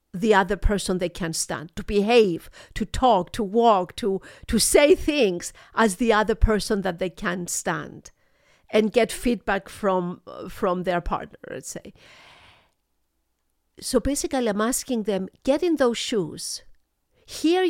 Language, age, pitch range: English, 50-69, 195-265 Hz